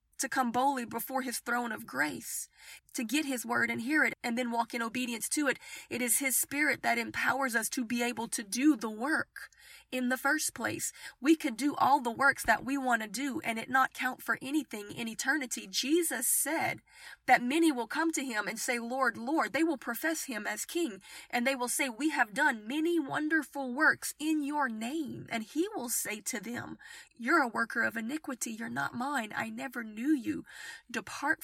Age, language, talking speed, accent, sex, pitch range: 30-49, English, 210 wpm, American, female, 235-295 Hz